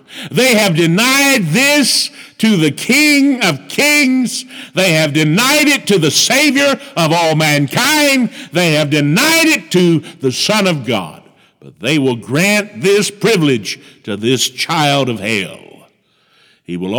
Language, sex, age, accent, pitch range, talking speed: English, male, 60-79, American, 150-215 Hz, 145 wpm